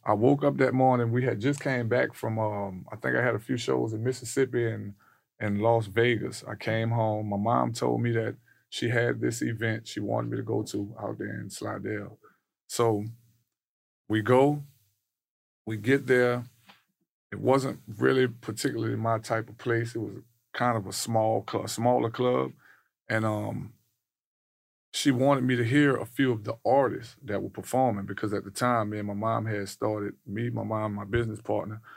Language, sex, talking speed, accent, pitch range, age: English, male, 190 wpm, American, 105-120 Hz, 20-39